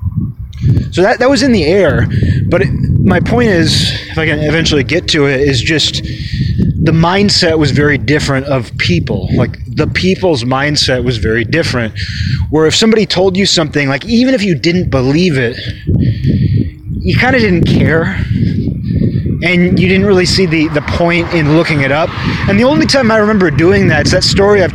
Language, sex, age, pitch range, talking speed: English, male, 20-39, 125-165 Hz, 185 wpm